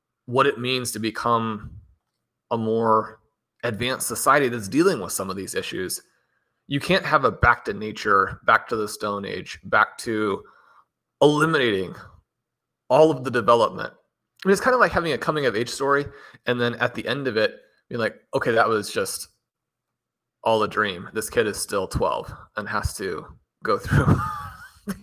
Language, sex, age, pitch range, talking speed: English, male, 30-49, 115-160 Hz, 175 wpm